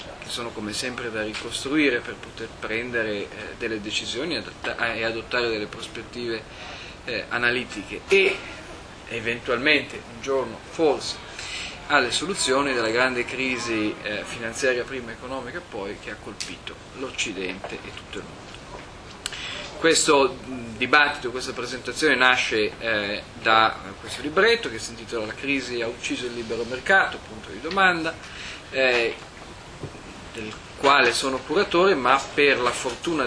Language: Italian